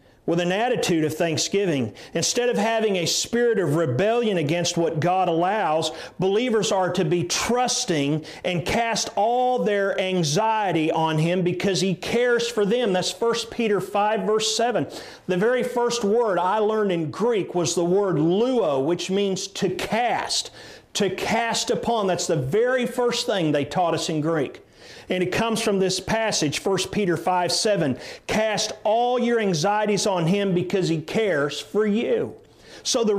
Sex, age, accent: male, 40-59, American